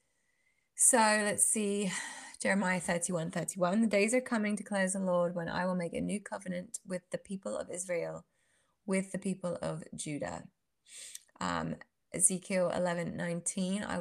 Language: English